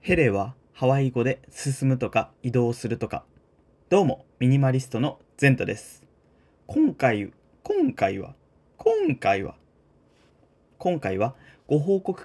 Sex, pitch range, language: male, 125-165 Hz, Japanese